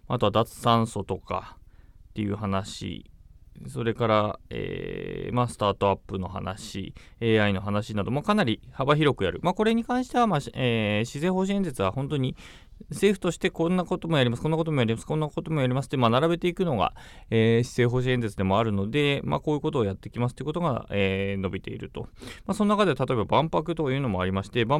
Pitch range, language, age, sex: 105-160 Hz, Japanese, 20-39, male